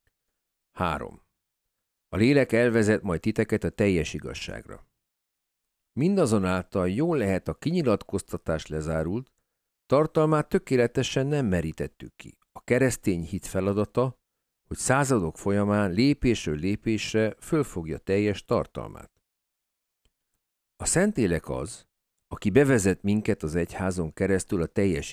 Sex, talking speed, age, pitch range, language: male, 100 wpm, 50-69, 85-115 Hz, Hungarian